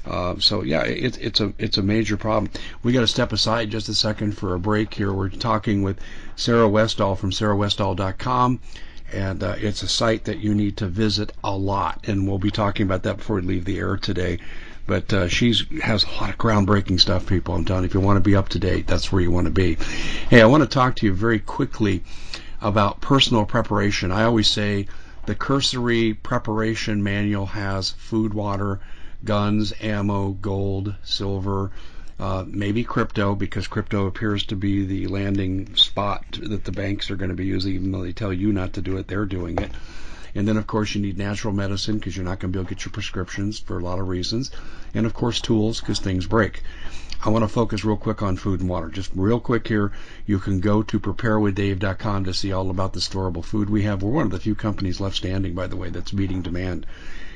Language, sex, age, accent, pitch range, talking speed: English, male, 50-69, American, 95-110 Hz, 220 wpm